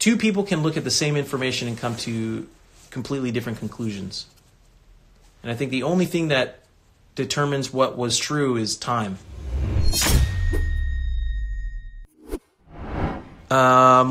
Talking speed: 120 wpm